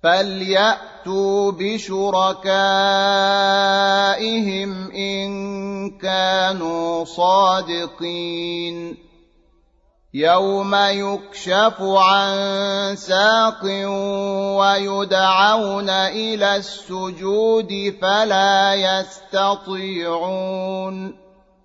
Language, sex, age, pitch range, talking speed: Arabic, male, 30-49, 190-195 Hz, 40 wpm